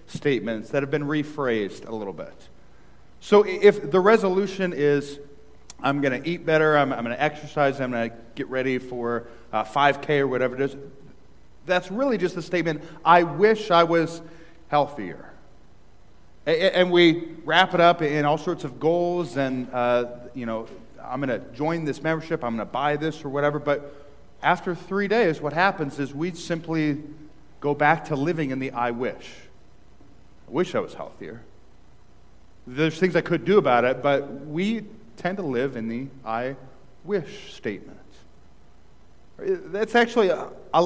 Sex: male